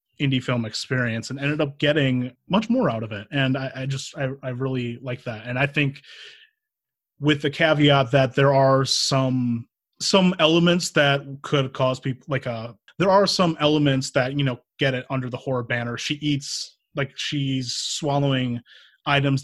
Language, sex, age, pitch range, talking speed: English, male, 30-49, 120-145 Hz, 180 wpm